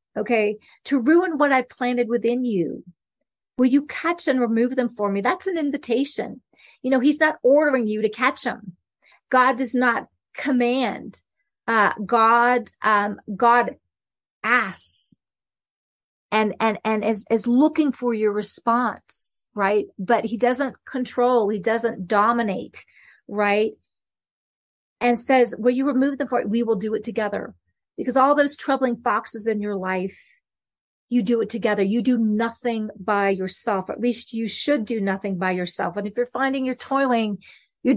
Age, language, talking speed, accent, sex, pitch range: 40-59, English, 160 wpm, American, female, 215-260 Hz